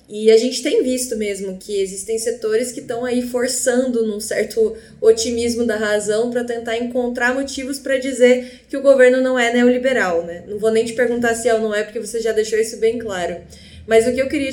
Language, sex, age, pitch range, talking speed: Portuguese, female, 10-29, 210-255 Hz, 220 wpm